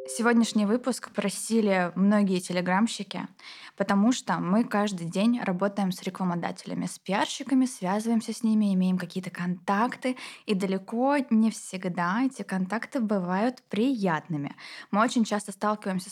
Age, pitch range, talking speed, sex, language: 20-39, 185-240 Hz, 125 wpm, female, Russian